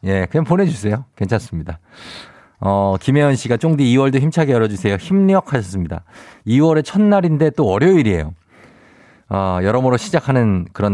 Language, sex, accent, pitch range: Korean, male, native, 100-145 Hz